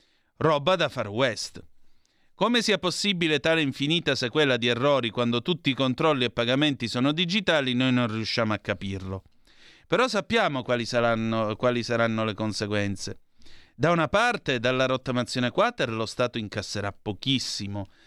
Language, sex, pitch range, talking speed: Italian, male, 115-160 Hz, 140 wpm